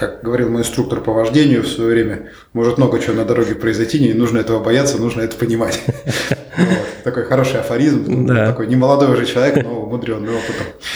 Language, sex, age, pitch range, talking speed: Russian, male, 20-39, 105-120 Hz, 175 wpm